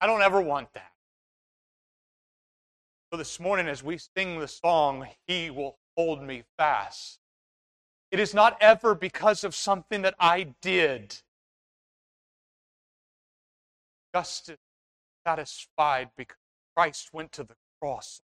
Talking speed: 120 wpm